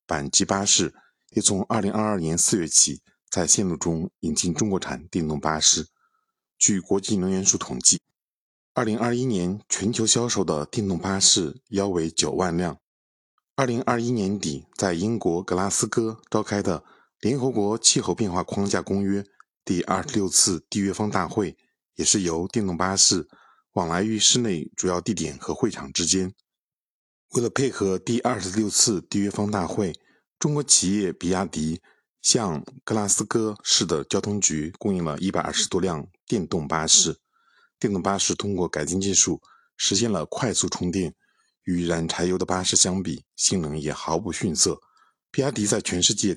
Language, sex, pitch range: Chinese, male, 85-105 Hz